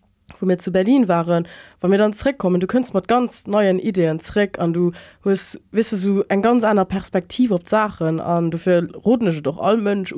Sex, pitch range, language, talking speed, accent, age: female, 170-210 Hz, English, 195 wpm, German, 20-39